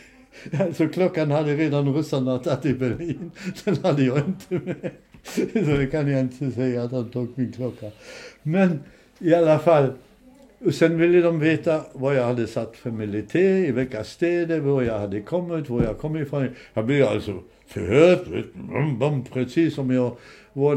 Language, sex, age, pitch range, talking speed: Swedish, male, 60-79, 120-165 Hz, 170 wpm